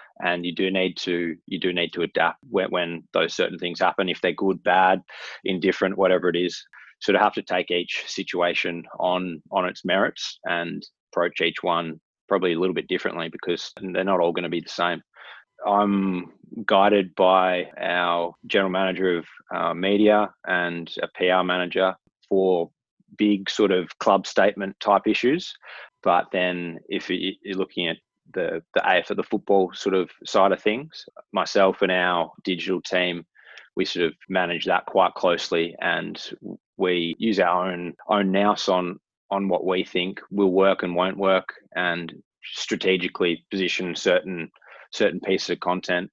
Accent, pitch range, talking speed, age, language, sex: Australian, 85-95 Hz, 165 wpm, 20-39, English, male